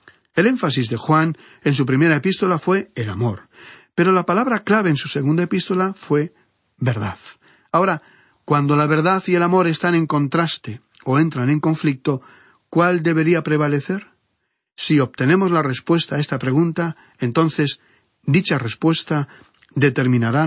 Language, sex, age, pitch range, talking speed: Spanish, male, 40-59, 125-175 Hz, 145 wpm